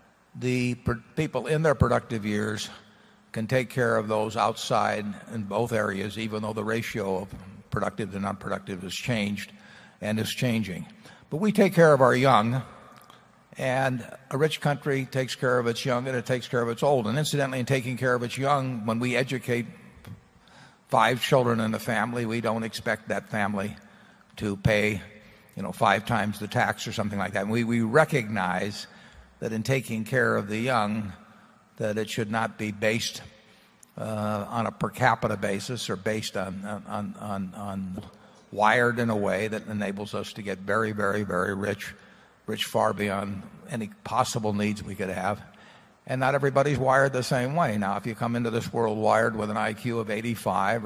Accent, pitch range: American, 105-125 Hz